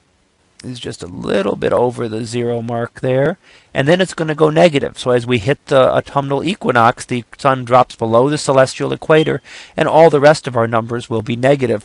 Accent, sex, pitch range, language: American, male, 95-135 Hz, English